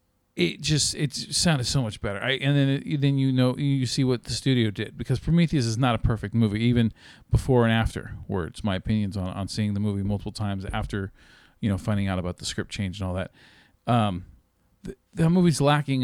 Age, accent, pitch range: 40-59, American, 110-155 Hz